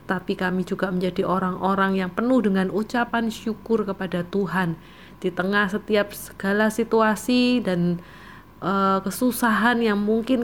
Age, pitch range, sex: 30-49, 185-225 Hz, female